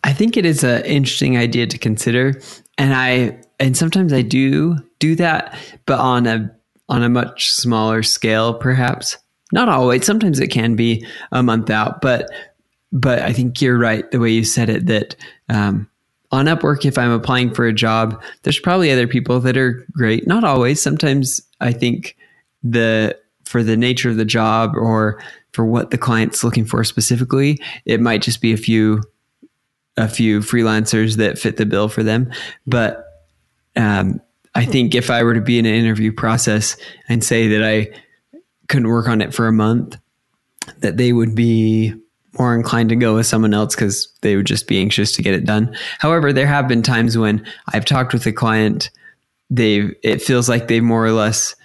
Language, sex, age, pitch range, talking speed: English, male, 20-39, 110-130 Hz, 190 wpm